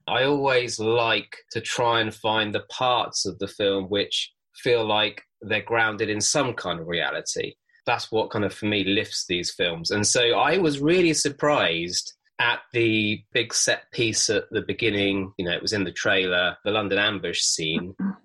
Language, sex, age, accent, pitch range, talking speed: English, male, 20-39, British, 100-155 Hz, 185 wpm